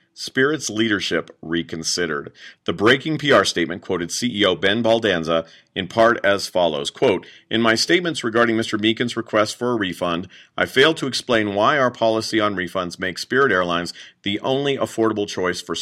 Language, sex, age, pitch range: English, male, 40-59, 95-120 Hz